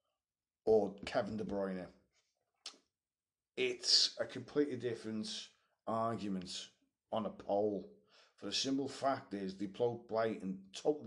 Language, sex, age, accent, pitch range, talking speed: English, male, 40-59, British, 100-145 Hz, 115 wpm